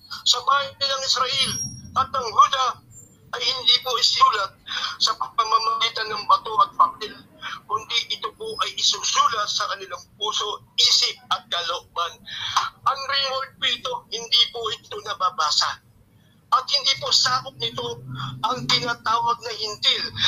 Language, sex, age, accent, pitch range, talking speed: English, male, 50-69, Filipino, 225-295 Hz, 130 wpm